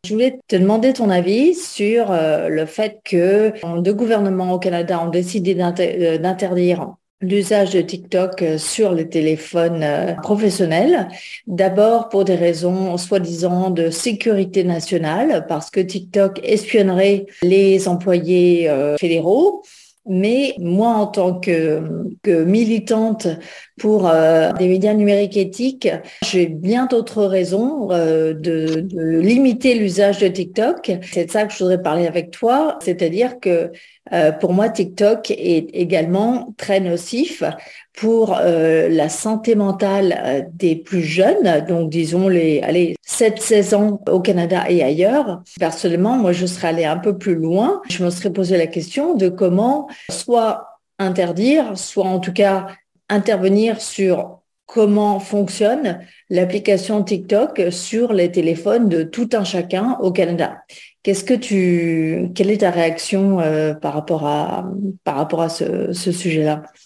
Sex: female